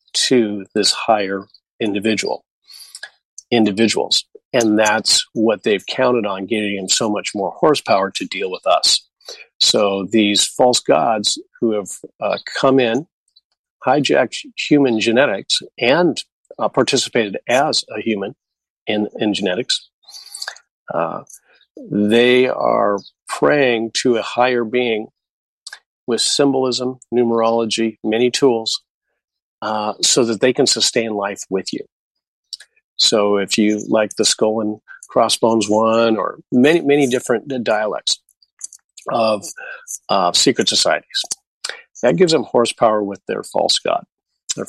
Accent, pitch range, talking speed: American, 105-130 Hz, 120 wpm